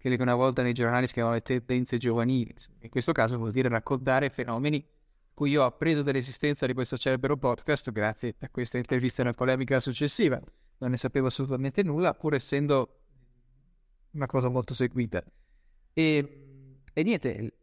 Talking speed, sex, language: 160 wpm, male, Italian